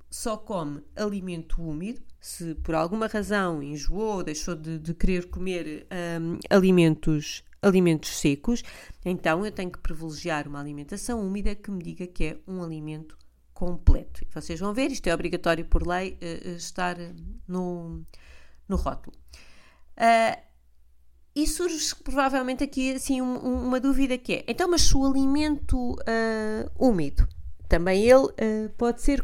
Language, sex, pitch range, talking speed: Portuguese, female, 165-225 Hz, 130 wpm